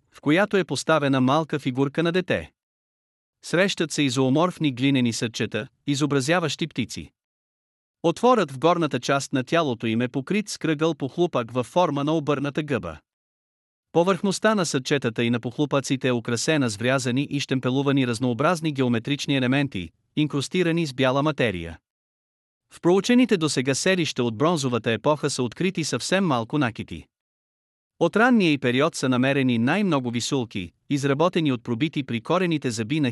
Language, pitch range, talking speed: Bulgarian, 125-160 Hz, 145 wpm